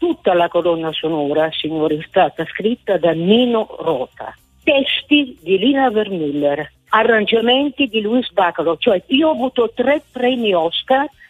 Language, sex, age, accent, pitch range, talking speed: Italian, female, 50-69, native, 180-255 Hz, 140 wpm